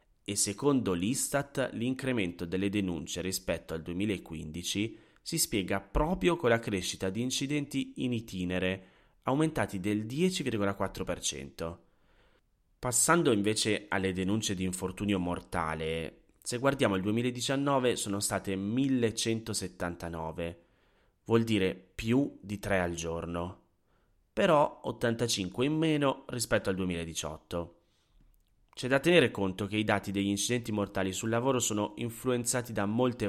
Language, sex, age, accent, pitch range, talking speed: Italian, male, 30-49, native, 95-125 Hz, 120 wpm